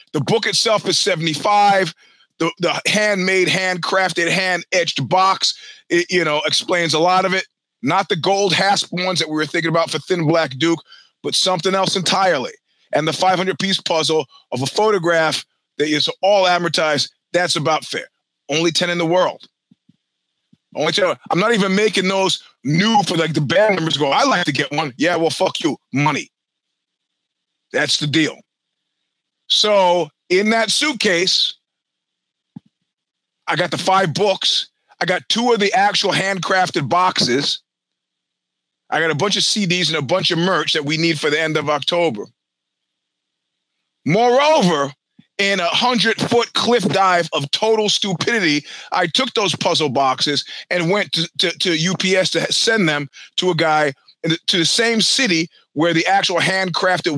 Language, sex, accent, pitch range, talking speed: English, male, American, 155-195 Hz, 165 wpm